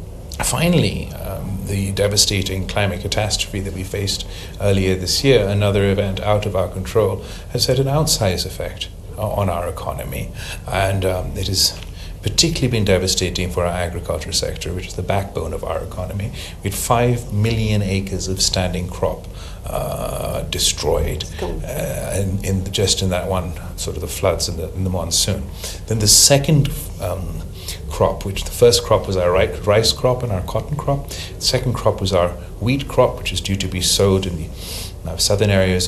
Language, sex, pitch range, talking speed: English, male, 90-100 Hz, 170 wpm